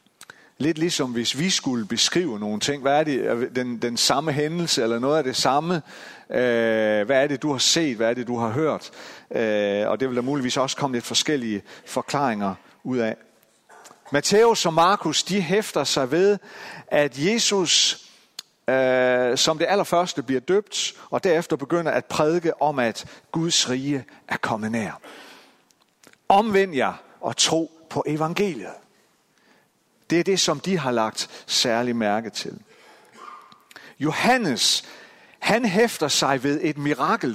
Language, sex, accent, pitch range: Danish, male, native, 120-170 Hz